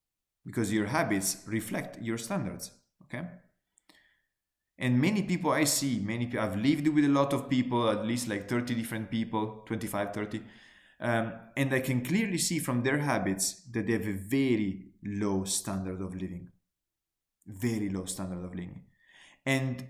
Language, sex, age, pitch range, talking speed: English, male, 20-39, 105-140 Hz, 160 wpm